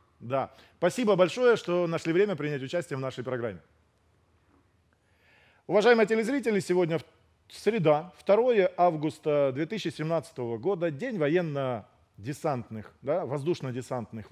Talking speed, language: 95 wpm, Russian